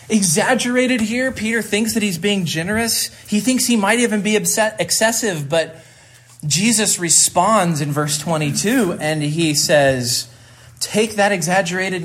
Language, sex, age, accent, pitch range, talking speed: English, male, 30-49, American, 125-180 Hz, 140 wpm